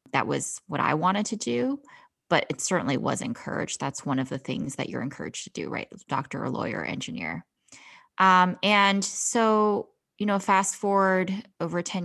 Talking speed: 175 wpm